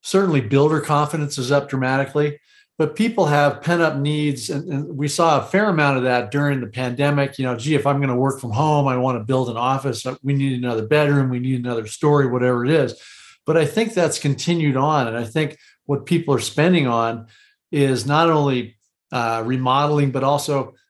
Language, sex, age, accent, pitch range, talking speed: English, male, 40-59, American, 125-150 Hz, 200 wpm